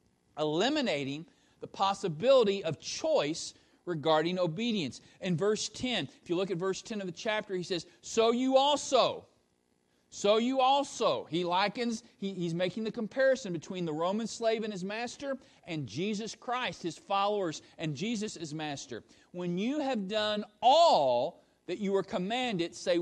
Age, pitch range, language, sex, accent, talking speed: 40-59, 165-240 Hz, English, male, American, 155 wpm